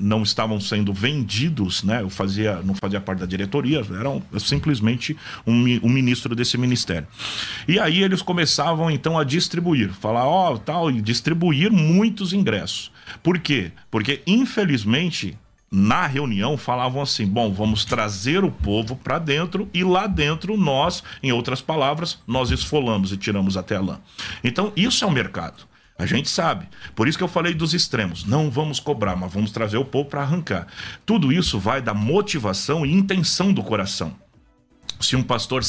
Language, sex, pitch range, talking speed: Portuguese, male, 105-150 Hz, 170 wpm